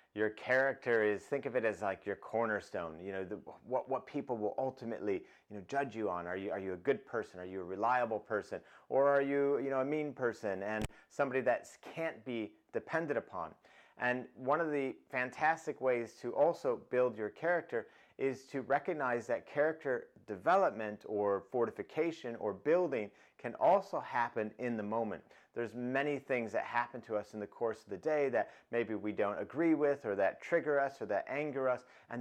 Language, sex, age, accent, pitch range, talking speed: English, male, 30-49, American, 105-140 Hz, 195 wpm